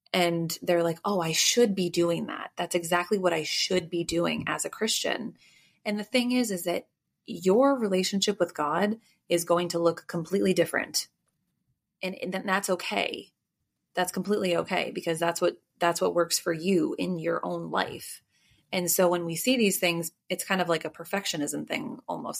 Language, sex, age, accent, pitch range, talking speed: English, female, 20-39, American, 170-195 Hz, 180 wpm